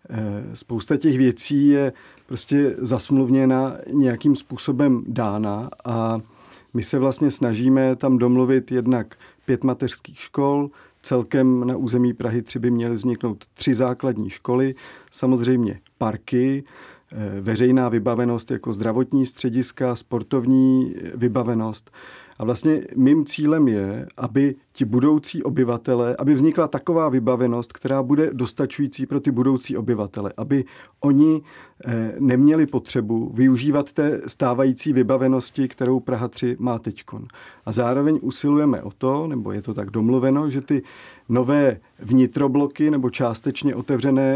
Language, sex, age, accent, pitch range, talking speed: Czech, male, 40-59, native, 120-140 Hz, 120 wpm